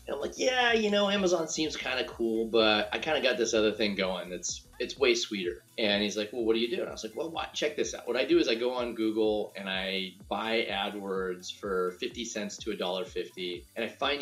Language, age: English, 30-49